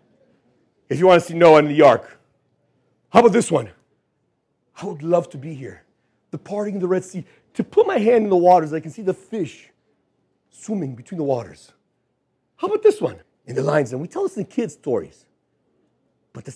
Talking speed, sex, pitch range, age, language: 210 wpm, male, 145-240 Hz, 40-59, English